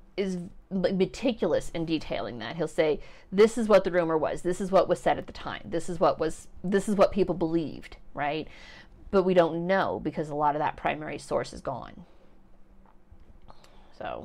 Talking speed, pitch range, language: 190 wpm, 155-190 Hz, English